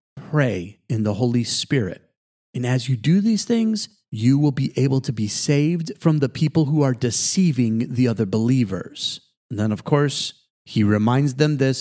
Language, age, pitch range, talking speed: English, 40-59, 120-150 Hz, 180 wpm